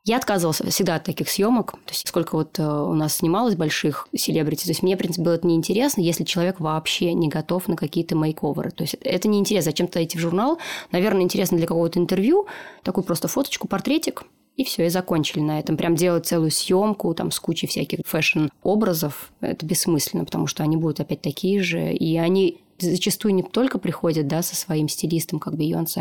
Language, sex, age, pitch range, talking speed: Russian, female, 20-39, 160-190 Hz, 195 wpm